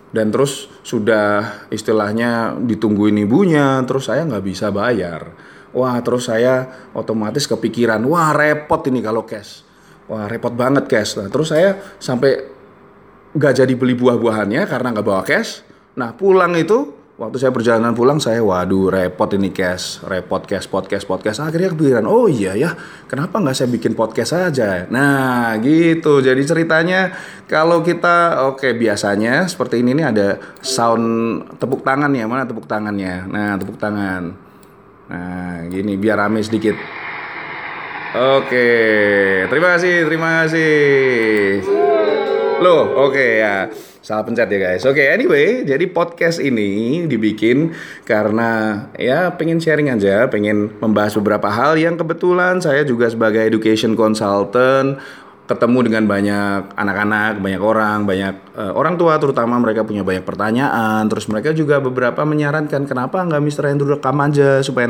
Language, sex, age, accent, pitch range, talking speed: Indonesian, male, 20-39, native, 105-140 Hz, 140 wpm